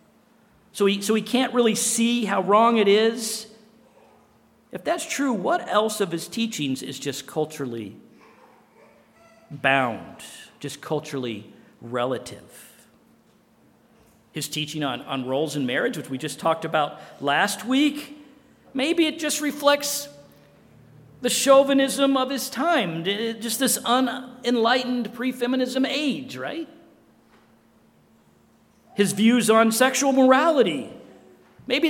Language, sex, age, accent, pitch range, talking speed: English, male, 50-69, American, 170-260 Hz, 115 wpm